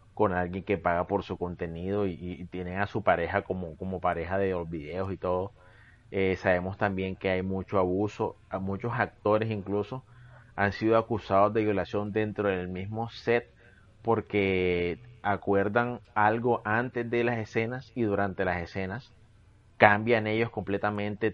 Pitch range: 90-105 Hz